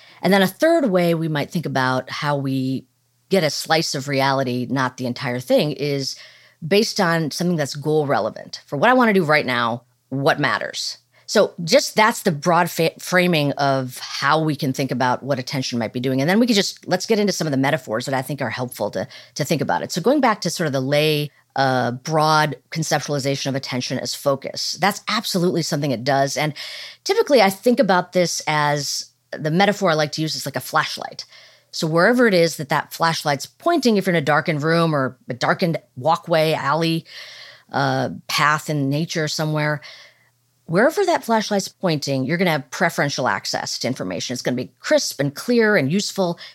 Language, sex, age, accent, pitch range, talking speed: English, female, 40-59, American, 135-180 Hz, 205 wpm